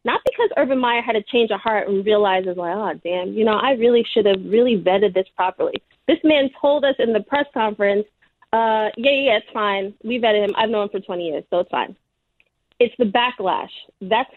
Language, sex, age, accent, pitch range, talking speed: English, female, 30-49, American, 195-245 Hz, 220 wpm